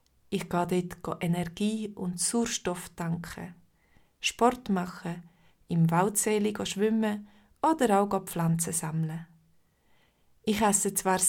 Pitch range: 170-200 Hz